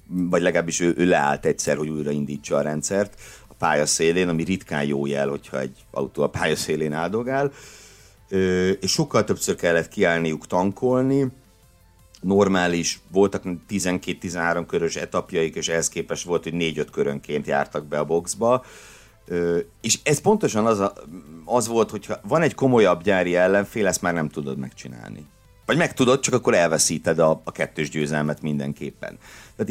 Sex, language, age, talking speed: male, Hungarian, 60-79, 150 wpm